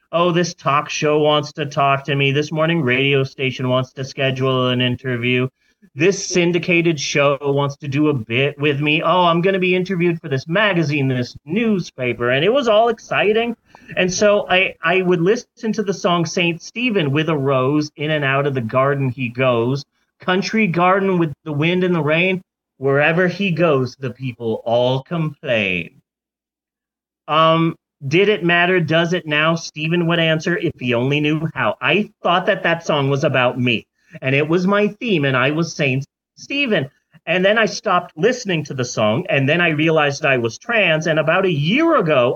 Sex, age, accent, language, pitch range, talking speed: male, 30-49, American, English, 140-185 Hz, 190 wpm